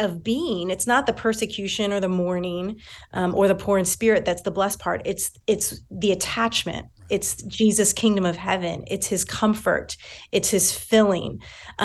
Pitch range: 185-240 Hz